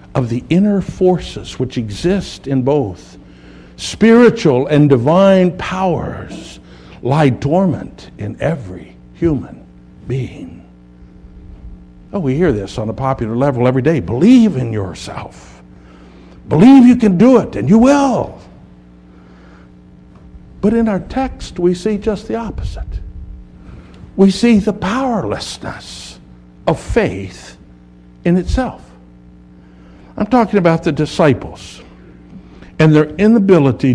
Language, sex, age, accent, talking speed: English, male, 60-79, American, 115 wpm